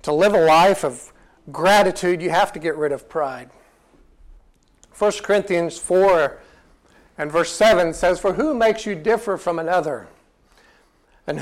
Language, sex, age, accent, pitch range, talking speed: English, male, 60-79, American, 160-220 Hz, 145 wpm